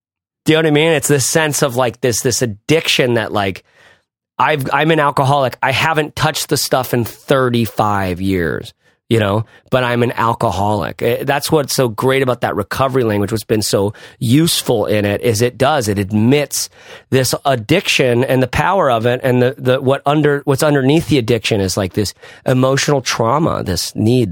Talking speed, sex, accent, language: 190 wpm, male, American, English